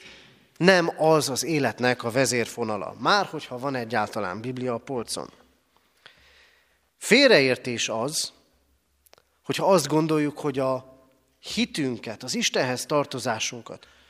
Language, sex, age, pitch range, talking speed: Hungarian, male, 30-49, 125-175 Hz, 100 wpm